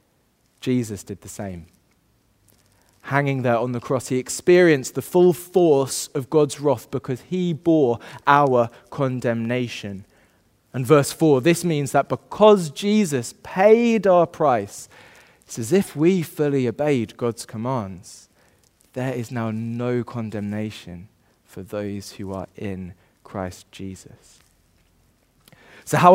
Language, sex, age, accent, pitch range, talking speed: English, male, 20-39, British, 110-155 Hz, 125 wpm